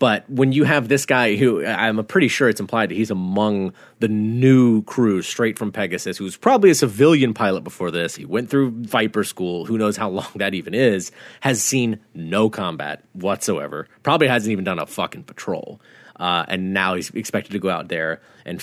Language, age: English, 30-49